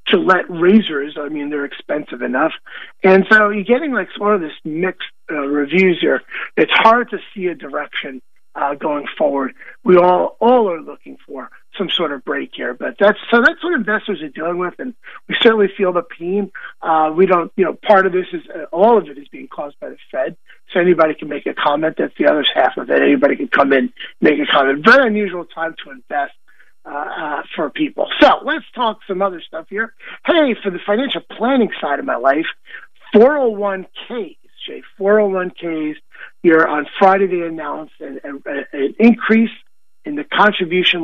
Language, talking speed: English, 195 wpm